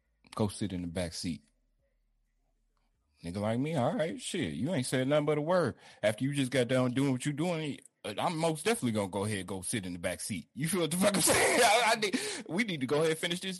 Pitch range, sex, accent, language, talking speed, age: 110-185 Hz, male, American, English, 250 wpm, 30-49